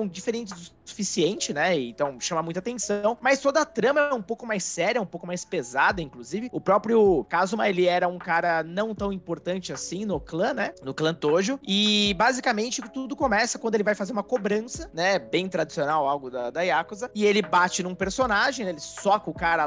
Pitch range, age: 180-225 Hz, 20-39